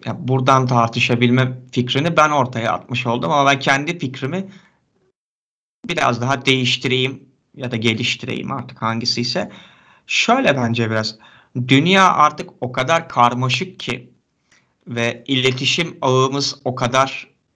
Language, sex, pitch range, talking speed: Turkish, male, 120-145 Hz, 120 wpm